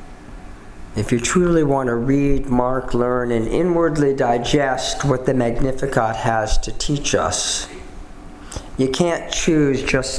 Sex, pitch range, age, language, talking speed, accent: male, 110-150 Hz, 50-69, English, 130 wpm, American